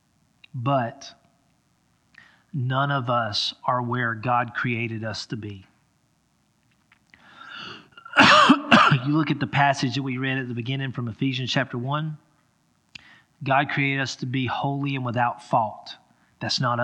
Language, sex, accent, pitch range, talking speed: English, male, American, 135-170 Hz, 130 wpm